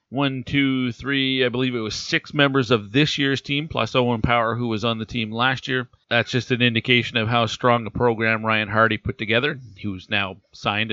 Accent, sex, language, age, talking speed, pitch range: American, male, English, 40-59, 220 wpm, 110-125 Hz